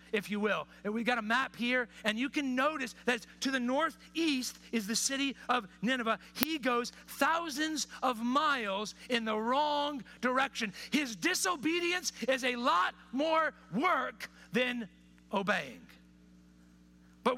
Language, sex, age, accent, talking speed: English, male, 40-59, American, 140 wpm